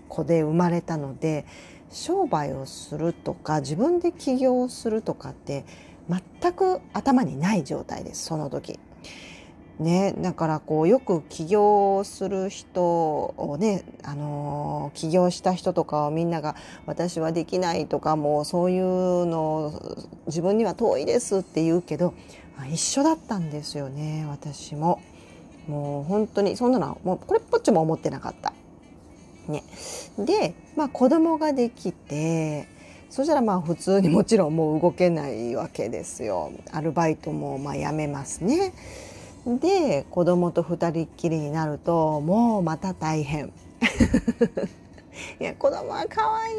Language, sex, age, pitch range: Japanese, female, 40-59, 155-230 Hz